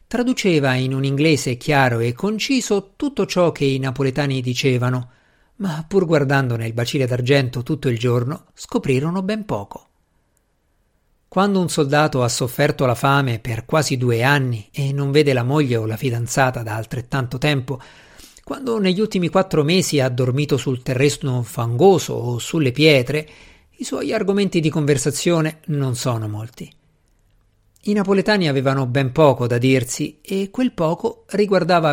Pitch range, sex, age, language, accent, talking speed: 125-155 Hz, male, 50-69, Italian, native, 150 wpm